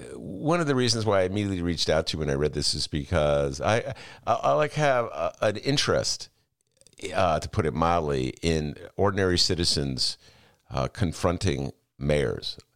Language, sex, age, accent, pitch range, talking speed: English, male, 50-69, American, 70-105 Hz, 165 wpm